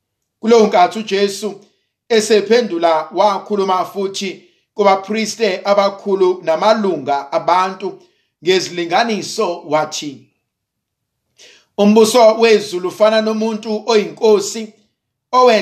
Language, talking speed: English, 80 wpm